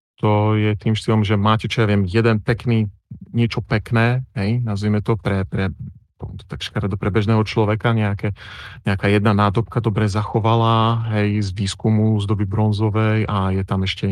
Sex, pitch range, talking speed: male, 100-115 Hz, 160 wpm